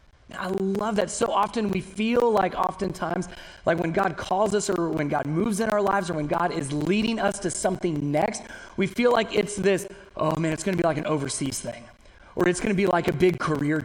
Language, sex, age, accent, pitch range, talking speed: English, male, 30-49, American, 155-205 Hz, 235 wpm